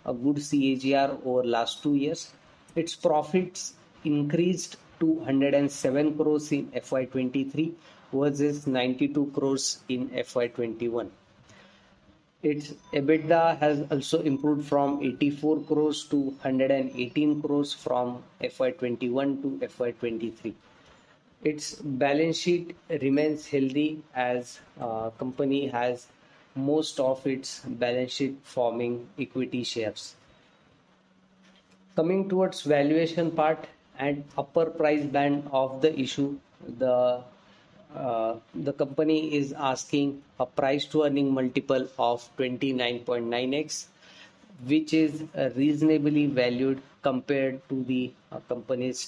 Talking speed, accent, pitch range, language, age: 105 wpm, Indian, 125-150 Hz, English, 20-39